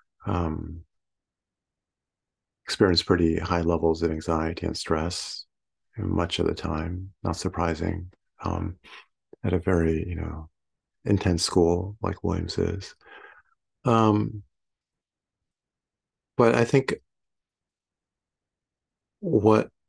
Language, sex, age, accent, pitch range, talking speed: English, male, 50-69, American, 85-100 Hz, 95 wpm